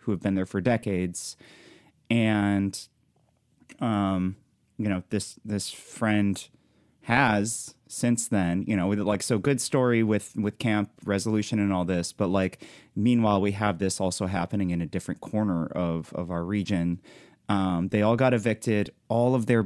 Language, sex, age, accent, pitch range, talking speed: English, male, 30-49, American, 95-120 Hz, 160 wpm